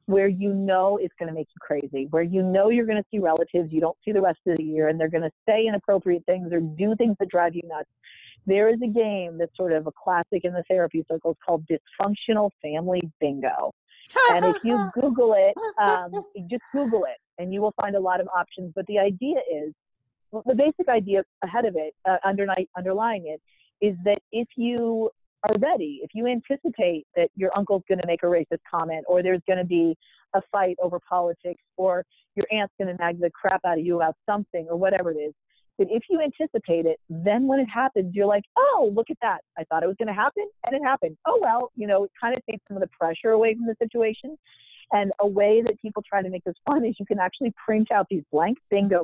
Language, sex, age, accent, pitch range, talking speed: English, female, 40-59, American, 175-225 Hz, 230 wpm